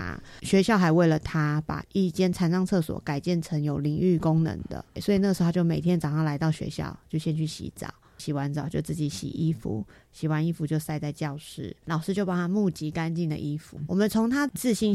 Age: 30-49